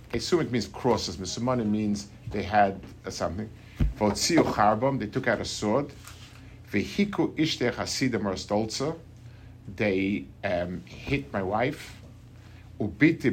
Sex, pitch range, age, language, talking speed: male, 100-120 Hz, 50-69, English, 120 wpm